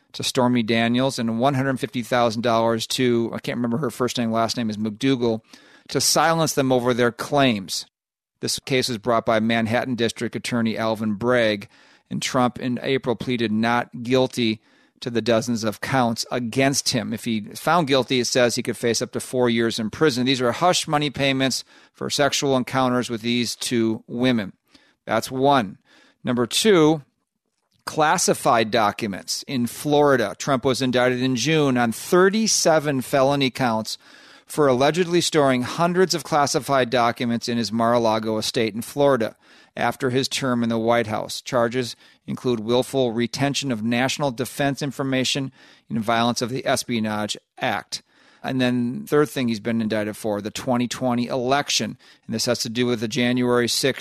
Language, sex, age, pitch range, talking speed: English, male, 40-59, 115-135 Hz, 160 wpm